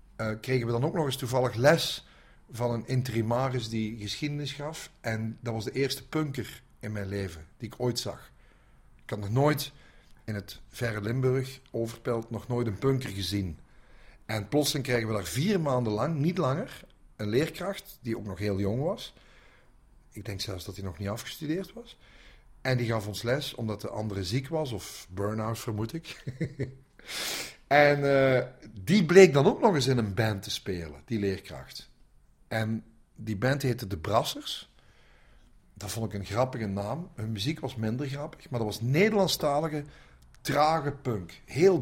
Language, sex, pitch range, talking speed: Dutch, male, 105-135 Hz, 175 wpm